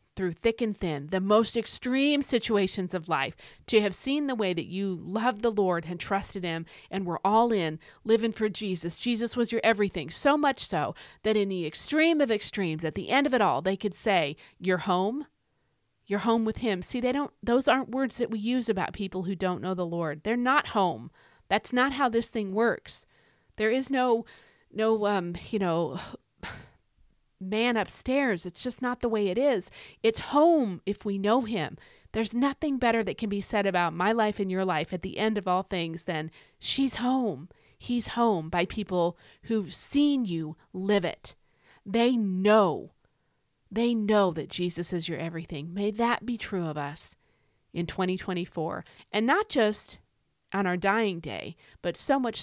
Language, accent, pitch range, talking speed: English, American, 180-235 Hz, 185 wpm